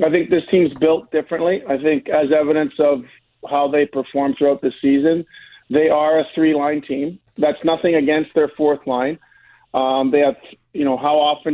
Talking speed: 180 wpm